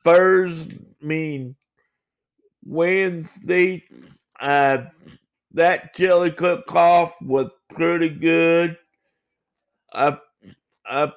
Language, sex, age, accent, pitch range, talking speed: English, male, 60-79, American, 145-180 Hz, 75 wpm